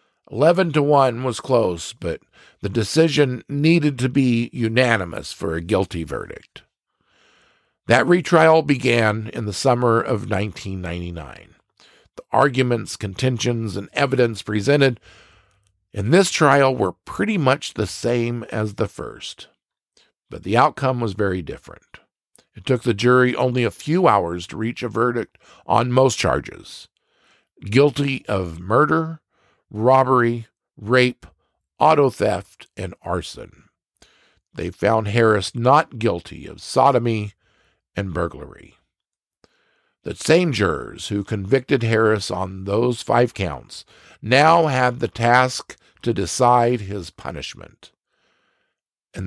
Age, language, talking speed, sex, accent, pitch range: 50-69, English, 120 wpm, male, American, 100-130 Hz